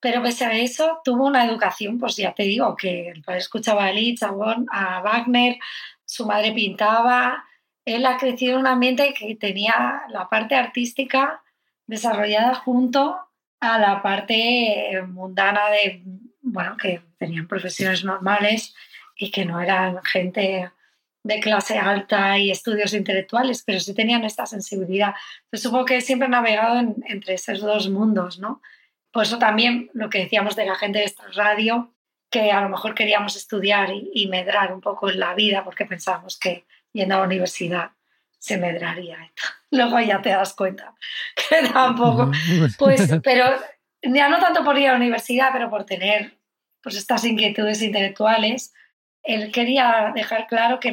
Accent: Spanish